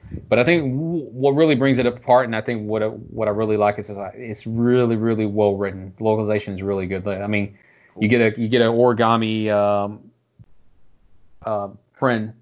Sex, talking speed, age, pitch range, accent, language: male, 190 wpm, 30-49, 100-115 Hz, American, English